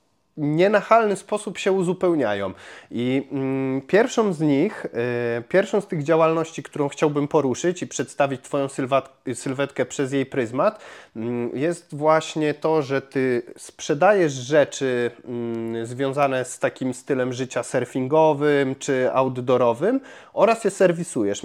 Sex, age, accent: male, 30-49, native